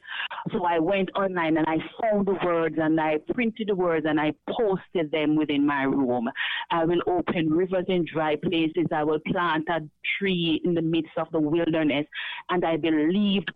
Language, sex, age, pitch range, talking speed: English, female, 40-59, 150-195 Hz, 185 wpm